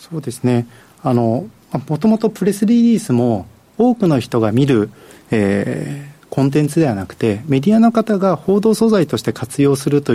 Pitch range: 110-175 Hz